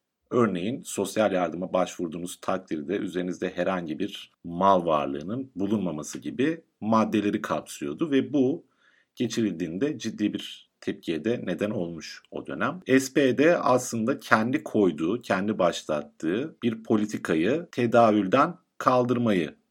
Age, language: 50-69, Turkish